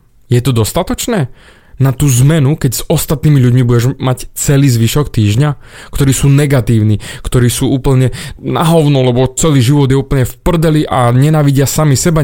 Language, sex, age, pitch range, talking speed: Slovak, male, 20-39, 115-145 Hz, 165 wpm